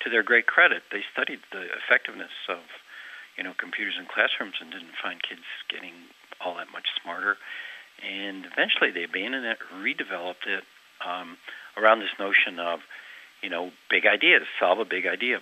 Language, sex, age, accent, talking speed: English, male, 60-79, American, 165 wpm